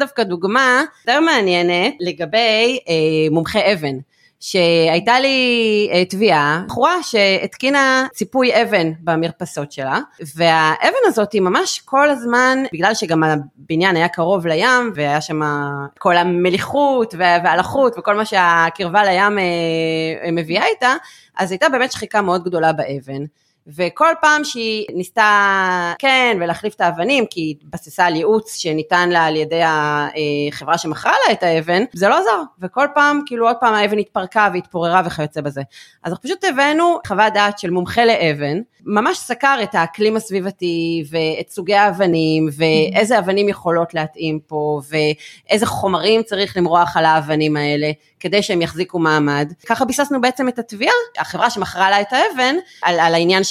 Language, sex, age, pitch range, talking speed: Hebrew, female, 30-49, 165-225 Hz, 135 wpm